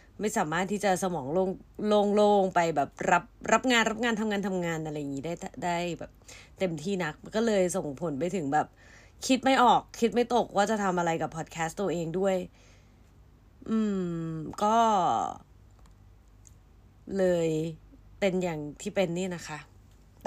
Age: 20-39